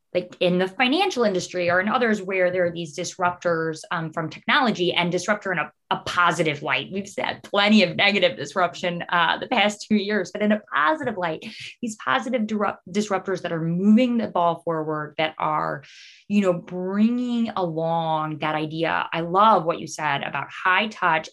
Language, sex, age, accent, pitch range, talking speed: English, female, 20-39, American, 165-205 Hz, 185 wpm